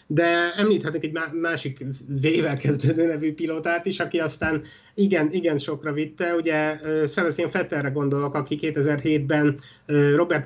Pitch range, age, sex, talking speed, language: 145-165 Hz, 30-49, male, 120 wpm, Hungarian